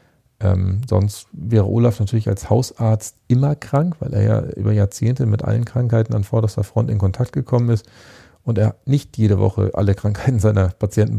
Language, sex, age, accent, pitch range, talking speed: German, male, 40-59, German, 105-125 Hz, 175 wpm